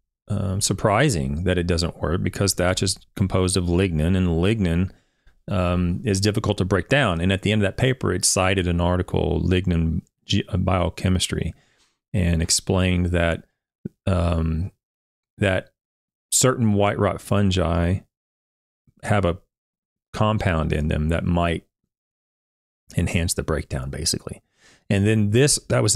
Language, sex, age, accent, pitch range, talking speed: English, male, 40-59, American, 85-105 Hz, 135 wpm